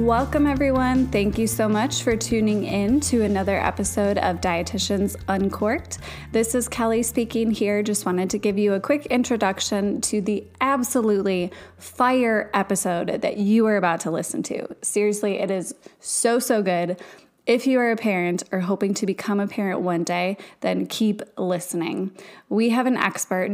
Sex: female